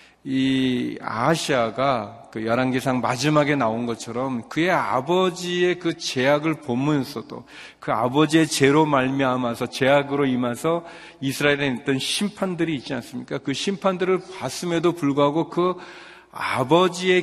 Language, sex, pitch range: Korean, male, 115-150 Hz